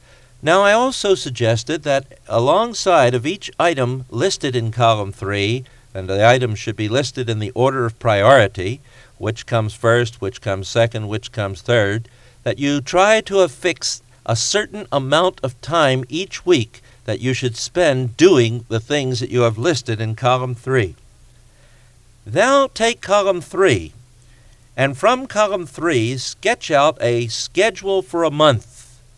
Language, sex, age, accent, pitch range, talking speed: English, male, 50-69, American, 120-150 Hz, 150 wpm